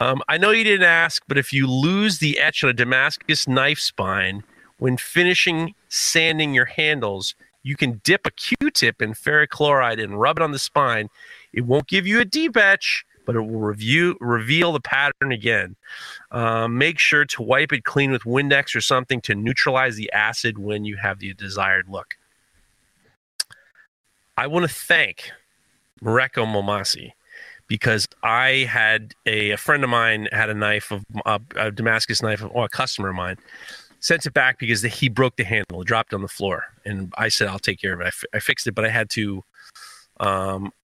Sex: male